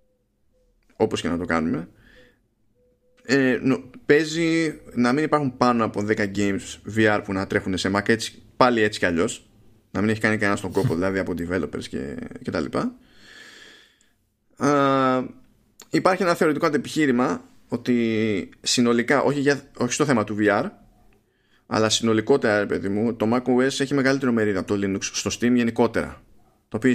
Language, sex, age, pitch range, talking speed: Greek, male, 20-39, 105-135 Hz, 155 wpm